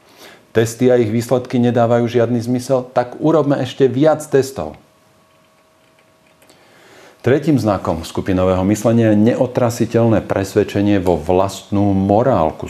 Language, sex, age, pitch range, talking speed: Slovak, male, 40-59, 100-130 Hz, 105 wpm